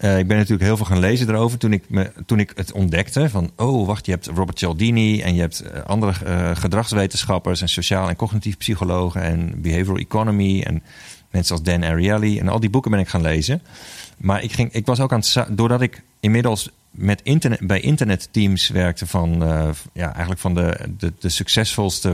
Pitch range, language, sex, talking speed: 90-110 Hz, Dutch, male, 200 wpm